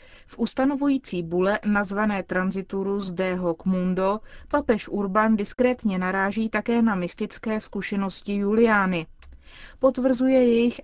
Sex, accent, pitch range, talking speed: female, native, 195-235 Hz, 105 wpm